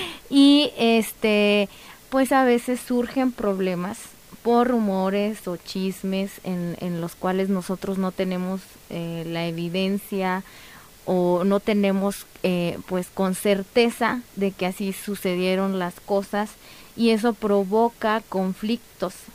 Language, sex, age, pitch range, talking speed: Spanish, female, 20-39, 190-225 Hz, 120 wpm